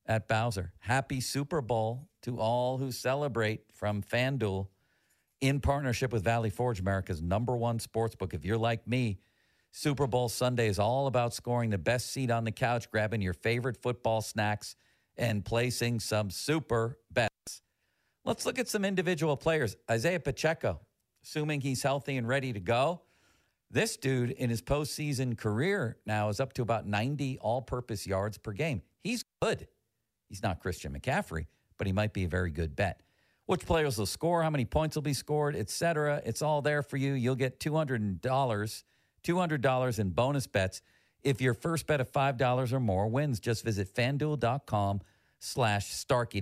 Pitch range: 105-135 Hz